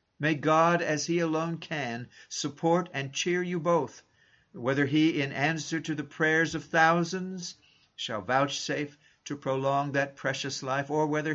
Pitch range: 120-155 Hz